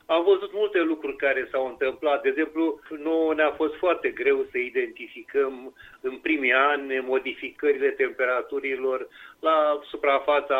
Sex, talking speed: male, 130 wpm